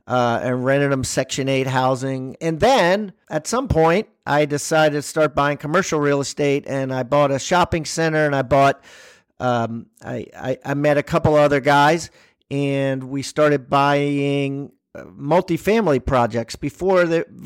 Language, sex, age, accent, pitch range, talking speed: English, male, 50-69, American, 135-160 Hz, 160 wpm